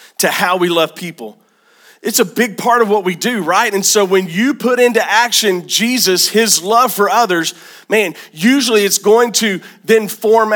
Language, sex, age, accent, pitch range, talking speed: English, male, 40-59, American, 185-220 Hz, 190 wpm